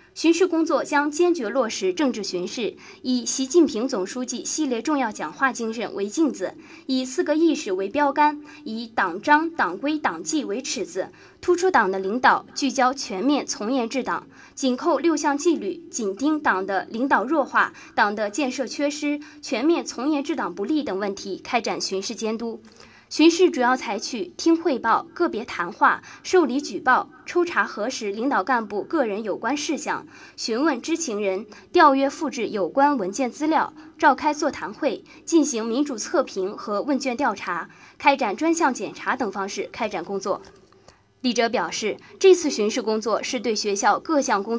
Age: 20-39